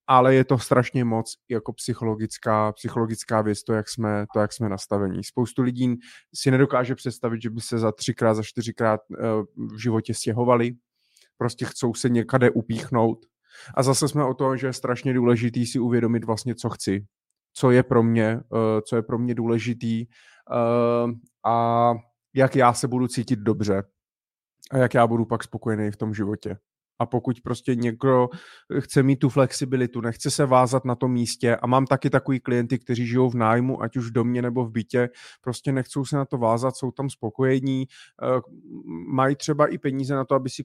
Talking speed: 175 wpm